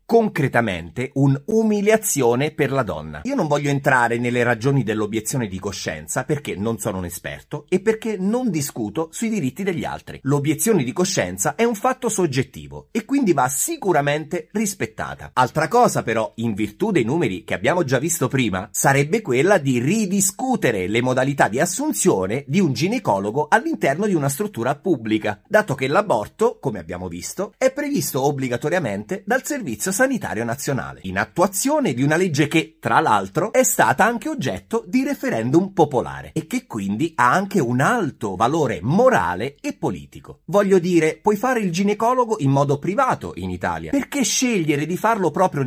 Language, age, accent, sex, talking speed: Italian, 30-49, native, male, 160 wpm